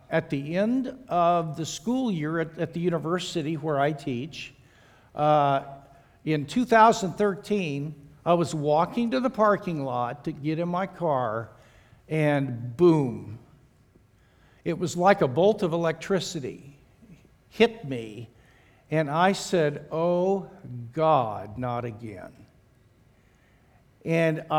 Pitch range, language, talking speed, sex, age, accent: 140-190 Hz, English, 115 wpm, male, 60-79, American